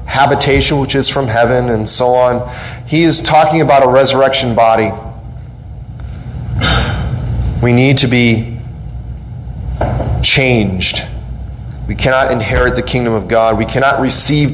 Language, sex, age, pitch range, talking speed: English, male, 30-49, 120-150 Hz, 125 wpm